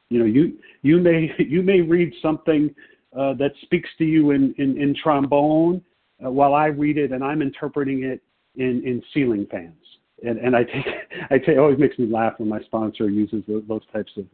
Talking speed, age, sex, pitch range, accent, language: 210 wpm, 50-69, male, 110-145 Hz, American, English